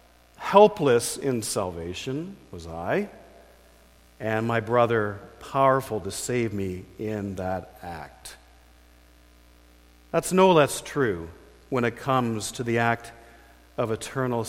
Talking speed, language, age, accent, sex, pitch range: 110 wpm, English, 50-69, American, male, 95-135 Hz